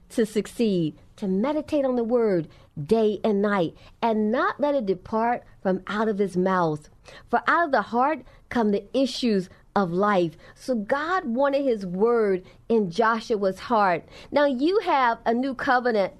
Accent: American